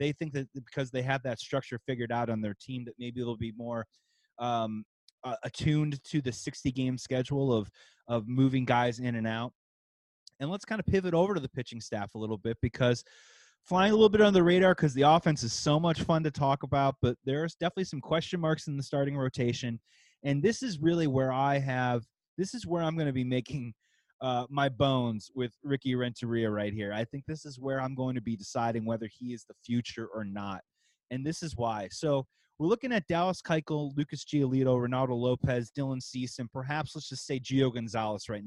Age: 30-49